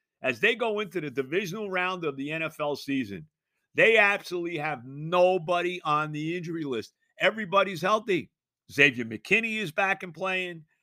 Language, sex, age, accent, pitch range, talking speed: English, male, 50-69, American, 155-200 Hz, 150 wpm